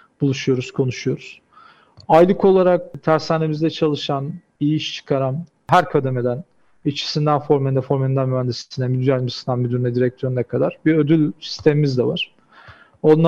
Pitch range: 135-155 Hz